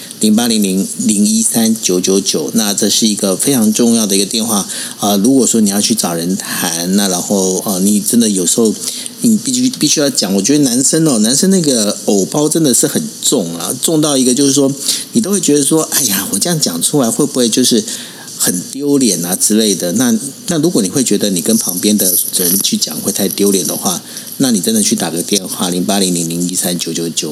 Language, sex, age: Chinese, male, 50-69